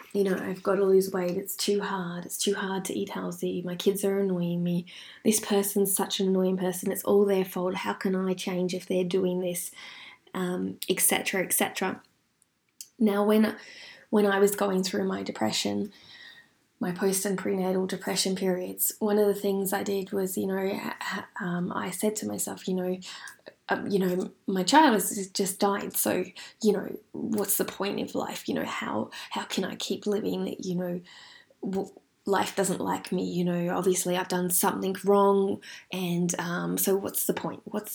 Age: 20-39